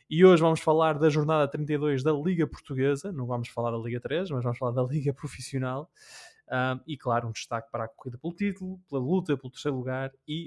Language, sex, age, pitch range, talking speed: Portuguese, male, 20-39, 130-160 Hz, 210 wpm